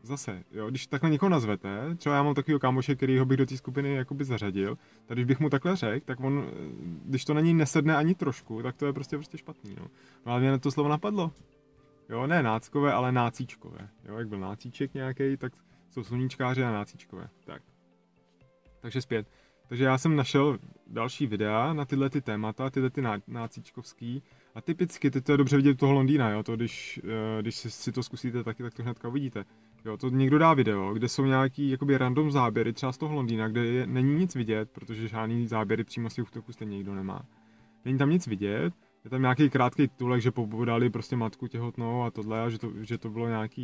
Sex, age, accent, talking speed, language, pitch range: male, 20-39, native, 215 wpm, Czech, 110-135 Hz